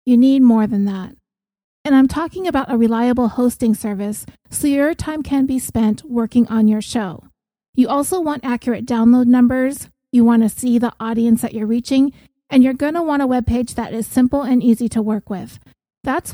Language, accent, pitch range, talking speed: English, American, 225-265 Hz, 200 wpm